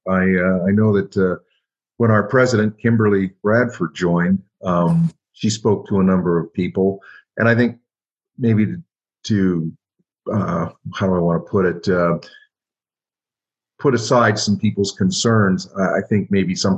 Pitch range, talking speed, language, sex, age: 90-105 Hz, 155 wpm, English, male, 50-69